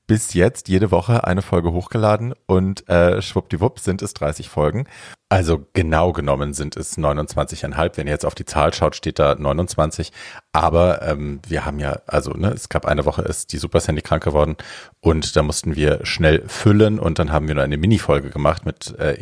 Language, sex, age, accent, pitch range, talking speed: German, male, 40-59, German, 80-100 Hz, 195 wpm